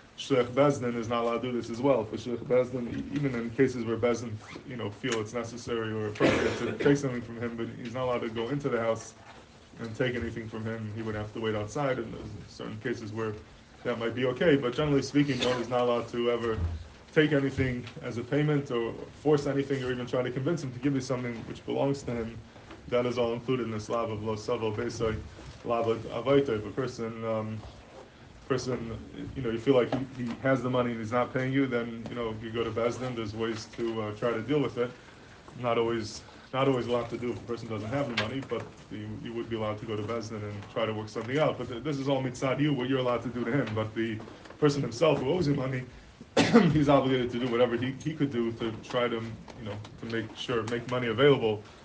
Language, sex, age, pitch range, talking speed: English, male, 20-39, 115-130 Hz, 240 wpm